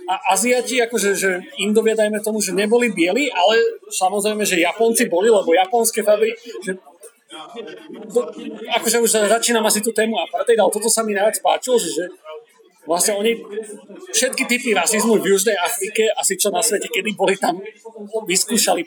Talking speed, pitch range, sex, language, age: 160 wpm, 180-230 Hz, male, Slovak, 30-49